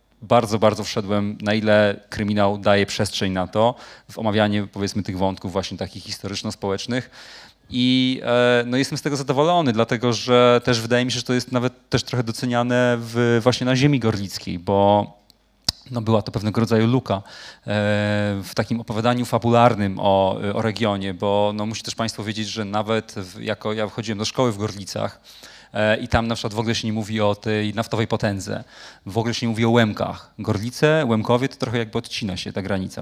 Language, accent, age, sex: Polish, native, 30-49, male